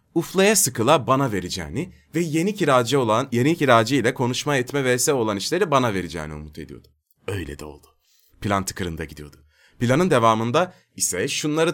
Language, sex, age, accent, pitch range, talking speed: Turkish, male, 30-49, native, 95-145 Hz, 155 wpm